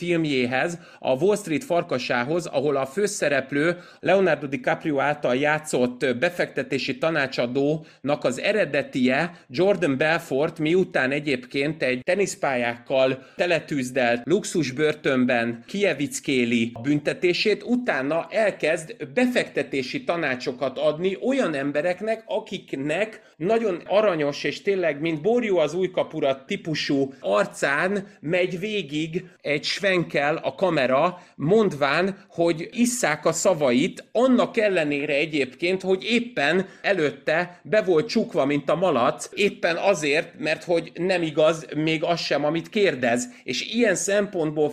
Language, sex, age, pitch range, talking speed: Hungarian, male, 30-49, 145-190 Hz, 110 wpm